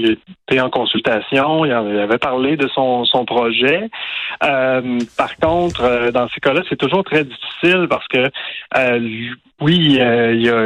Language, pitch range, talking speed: French, 110-130 Hz, 160 wpm